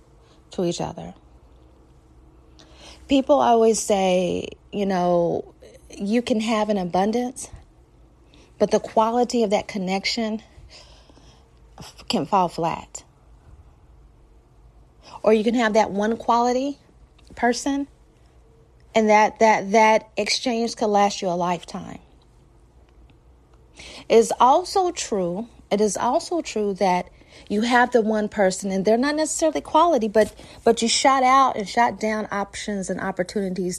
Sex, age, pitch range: female, 40-59, 180-230 Hz